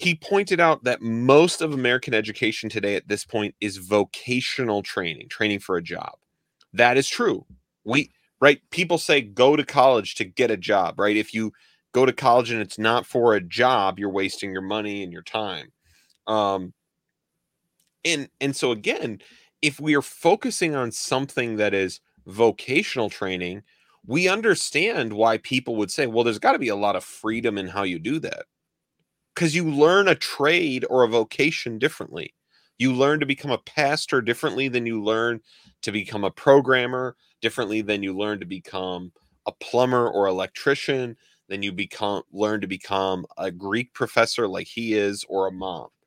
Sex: male